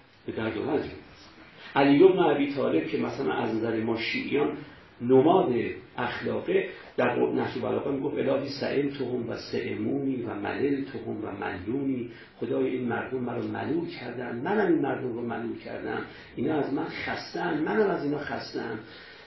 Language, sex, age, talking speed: Persian, male, 50-69, 150 wpm